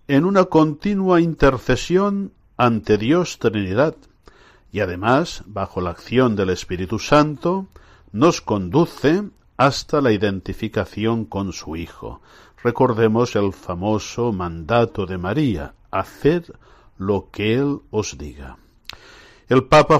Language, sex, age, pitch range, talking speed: Spanish, male, 60-79, 105-150 Hz, 110 wpm